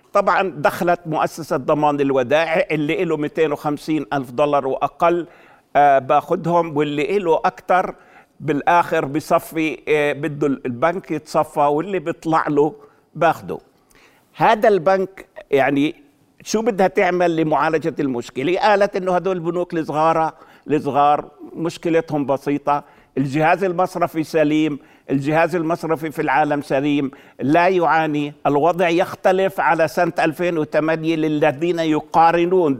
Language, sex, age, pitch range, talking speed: Arabic, male, 60-79, 150-170 Hz, 105 wpm